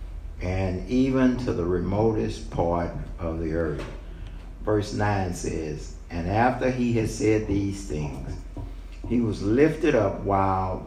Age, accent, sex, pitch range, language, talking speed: 60-79, American, male, 85-115 Hz, English, 135 wpm